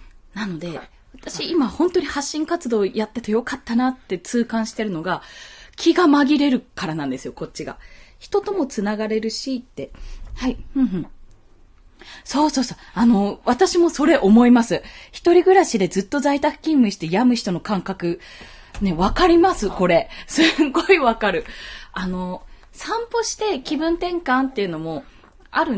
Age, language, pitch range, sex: 20-39, Japanese, 185-310 Hz, female